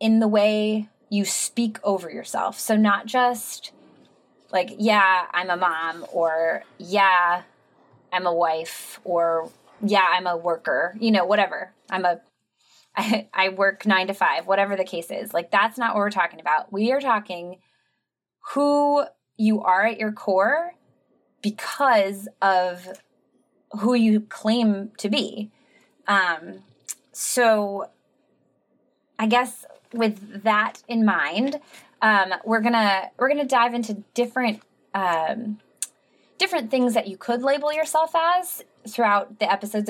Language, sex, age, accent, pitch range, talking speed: English, female, 20-39, American, 185-235 Hz, 140 wpm